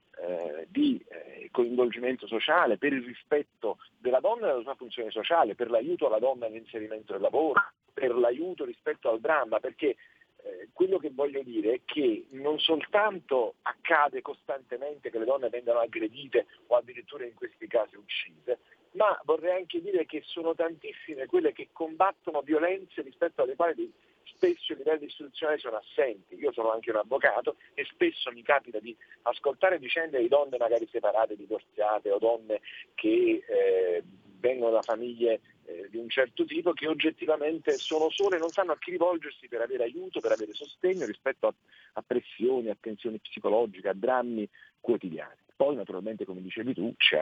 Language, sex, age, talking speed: Italian, male, 50-69, 165 wpm